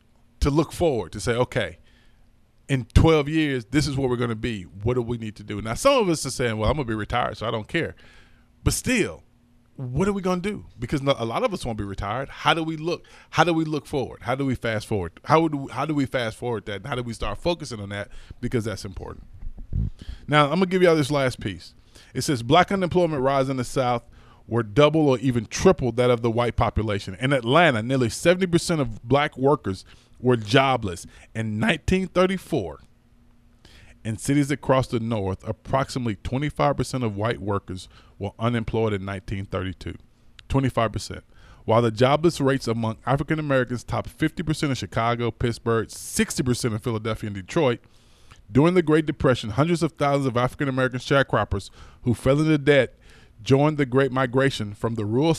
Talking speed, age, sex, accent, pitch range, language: 185 wpm, 20-39, male, American, 110-140 Hz, English